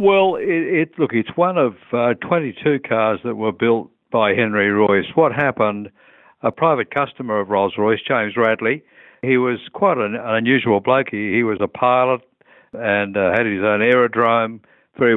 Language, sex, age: English, male, 60-79